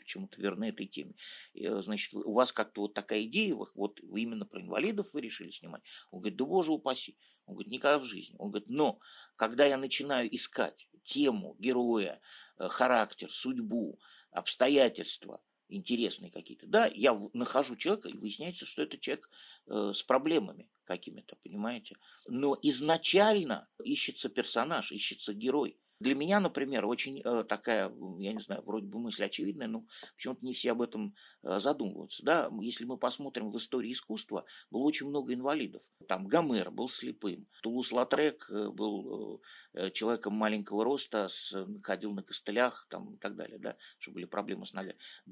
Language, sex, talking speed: Russian, male, 155 wpm